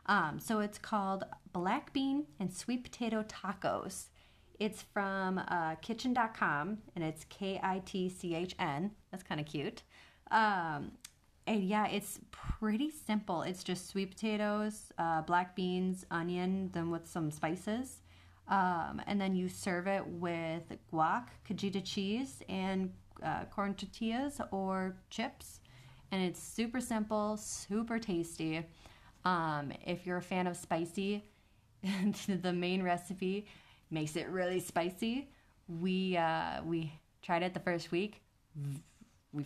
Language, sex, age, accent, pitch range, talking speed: English, female, 30-49, American, 165-210 Hz, 125 wpm